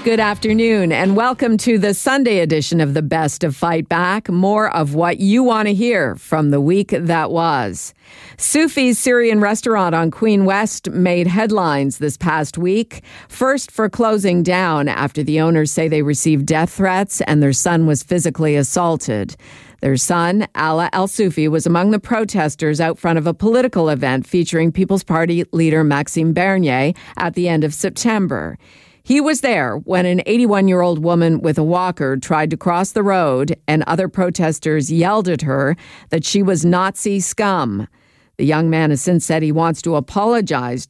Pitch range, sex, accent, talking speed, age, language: 155-200 Hz, female, American, 170 wpm, 50-69, English